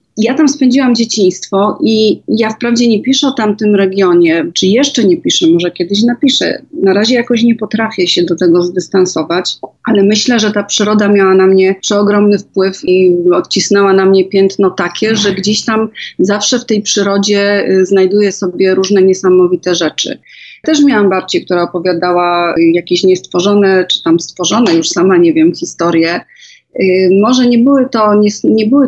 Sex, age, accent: female, 30-49, native